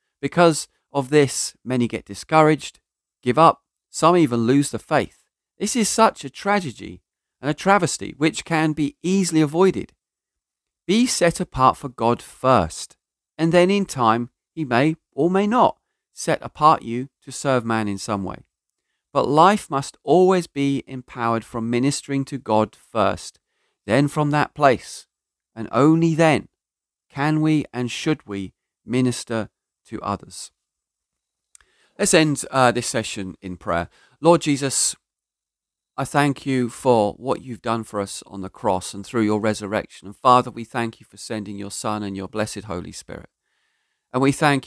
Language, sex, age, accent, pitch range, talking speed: English, male, 40-59, British, 110-150 Hz, 160 wpm